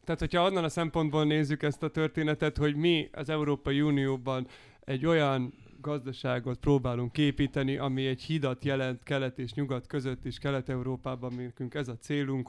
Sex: male